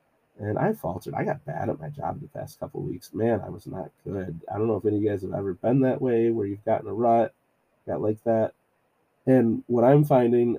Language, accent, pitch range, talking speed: English, American, 105-125 Hz, 250 wpm